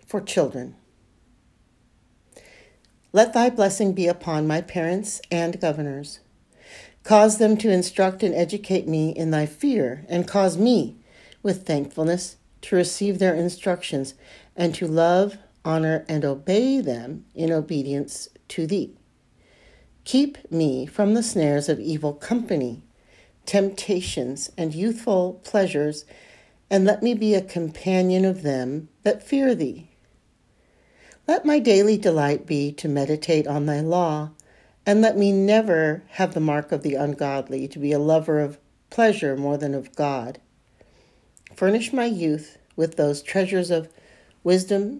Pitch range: 150-200 Hz